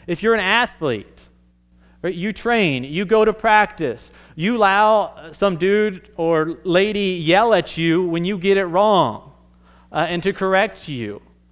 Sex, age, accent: male, 30-49, American